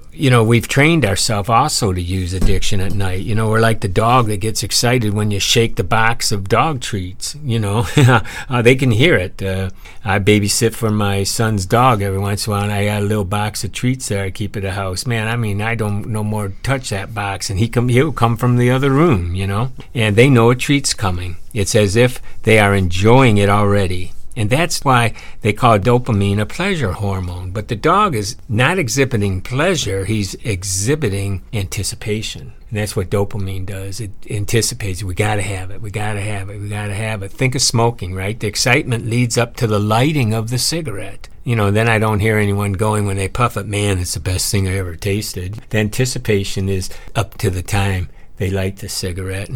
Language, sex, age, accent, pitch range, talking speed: English, male, 60-79, American, 100-120 Hz, 215 wpm